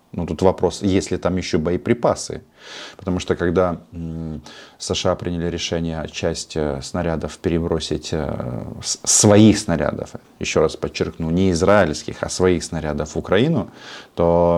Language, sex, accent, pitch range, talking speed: Russian, male, native, 80-95 Hz, 125 wpm